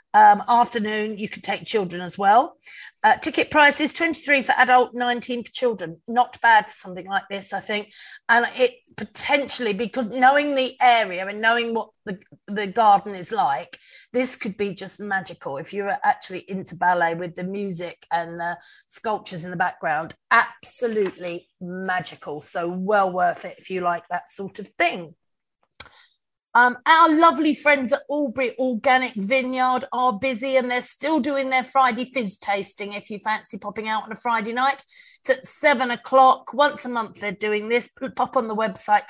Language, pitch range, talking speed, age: English, 195-260 Hz, 175 wpm, 40-59